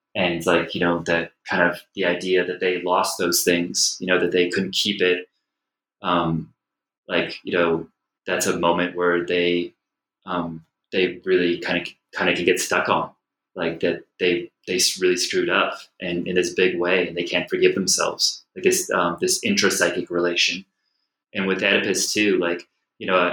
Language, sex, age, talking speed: English, male, 20-39, 180 wpm